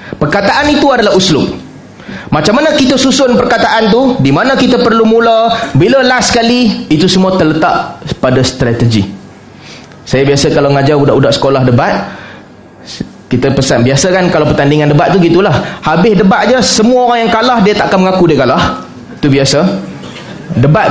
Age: 20-39